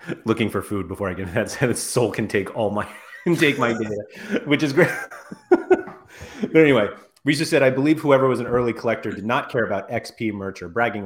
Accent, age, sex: American, 30-49, male